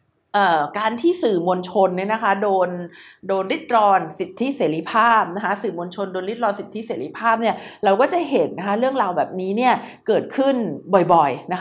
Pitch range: 195-255 Hz